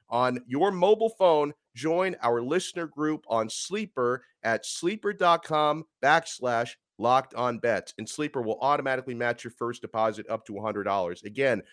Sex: male